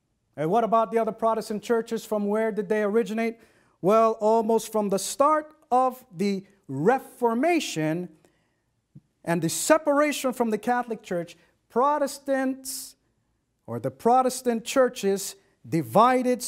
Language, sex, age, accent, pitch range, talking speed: Filipino, male, 50-69, American, 165-230 Hz, 120 wpm